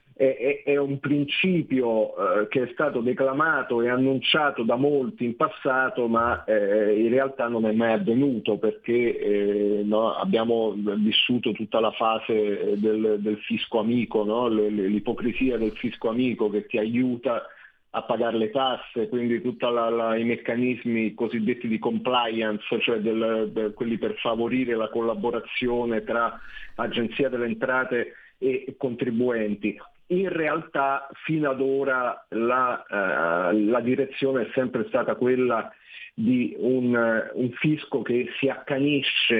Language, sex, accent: Italian, male, native